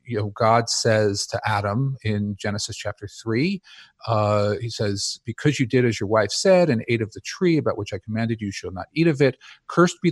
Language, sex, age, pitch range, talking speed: English, male, 40-59, 110-140 Hz, 220 wpm